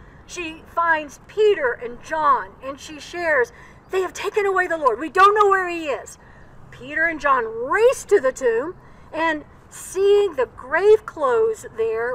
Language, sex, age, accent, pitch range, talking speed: English, female, 60-79, American, 290-430 Hz, 165 wpm